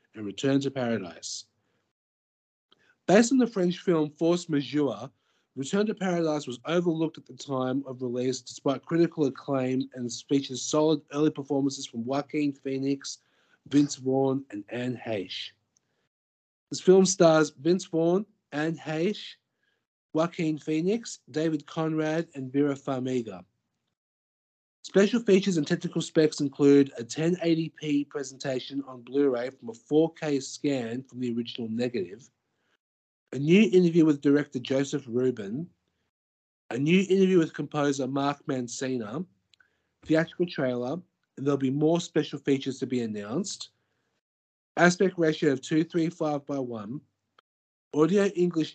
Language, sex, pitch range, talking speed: English, male, 130-160 Hz, 125 wpm